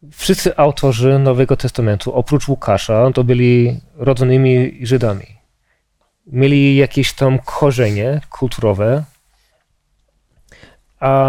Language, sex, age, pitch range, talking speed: Polish, male, 20-39, 125-155 Hz, 85 wpm